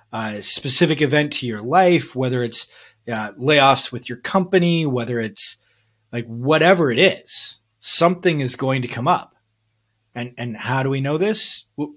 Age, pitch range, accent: 30-49, 115-150 Hz, American